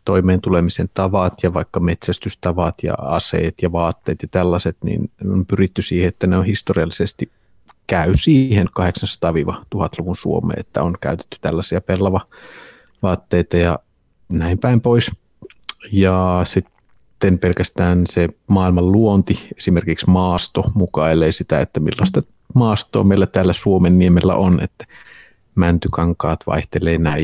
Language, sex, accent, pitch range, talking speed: Finnish, male, native, 85-100 Hz, 120 wpm